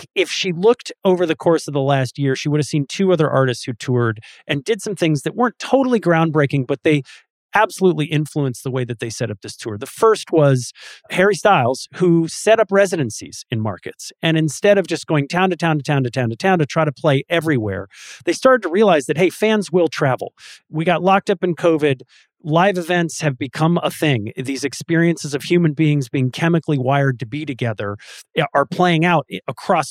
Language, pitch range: English, 135-175 Hz